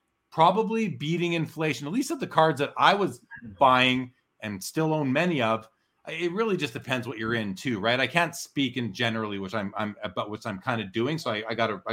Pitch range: 125-170 Hz